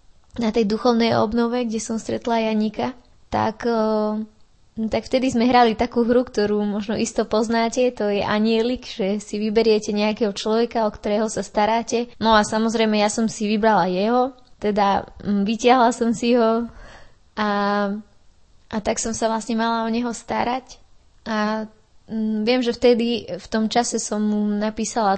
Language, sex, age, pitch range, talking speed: Slovak, female, 20-39, 210-235 Hz, 155 wpm